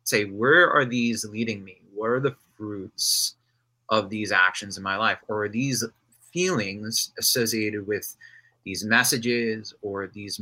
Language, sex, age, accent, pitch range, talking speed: English, male, 30-49, American, 105-120 Hz, 150 wpm